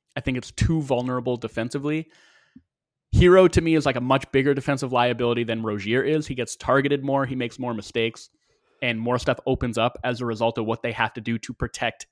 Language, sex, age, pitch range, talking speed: English, male, 20-39, 115-140 Hz, 215 wpm